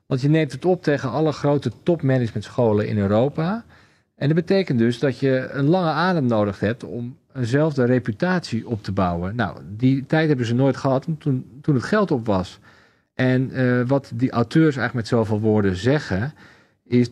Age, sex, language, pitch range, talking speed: 40-59, male, Dutch, 105-135 Hz, 180 wpm